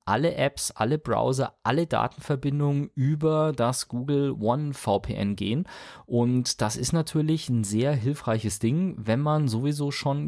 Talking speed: 140 wpm